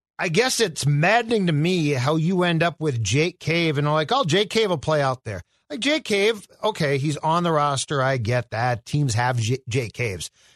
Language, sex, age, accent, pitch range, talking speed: English, male, 40-59, American, 150-195 Hz, 215 wpm